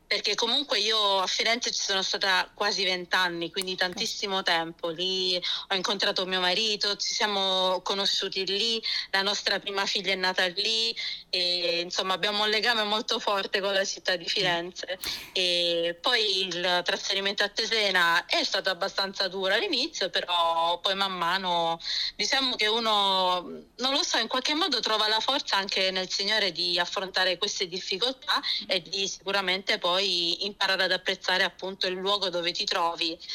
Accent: native